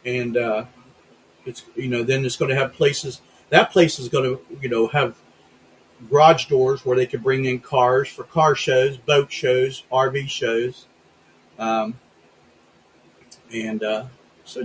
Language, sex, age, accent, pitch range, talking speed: English, male, 40-59, American, 120-165 Hz, 155 wpm